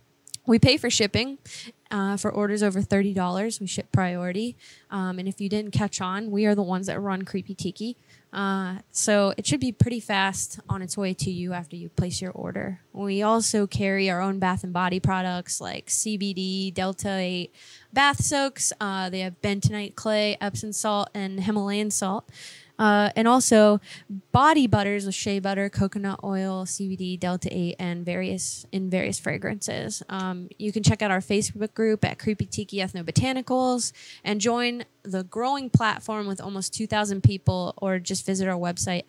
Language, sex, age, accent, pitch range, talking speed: English, female, 20-39, American, 185-215 Hz, 175 wpm